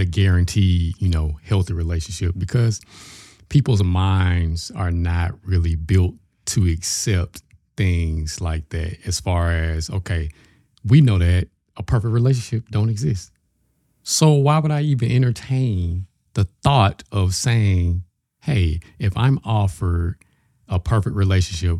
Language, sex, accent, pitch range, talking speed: English, male, American, 90-105 Hz, 125 wpm